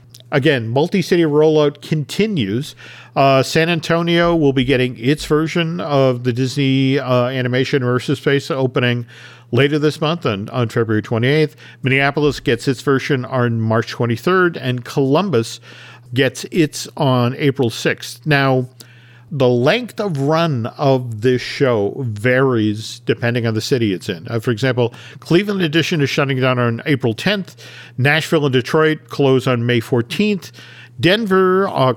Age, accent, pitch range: 50-69, American, 125-150 Hz